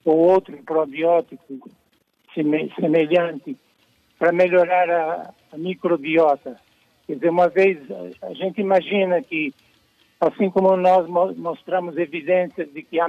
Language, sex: Portuguese, male